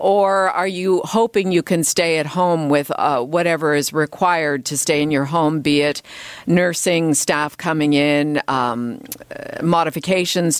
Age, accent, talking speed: 50-69, American, 160 wpm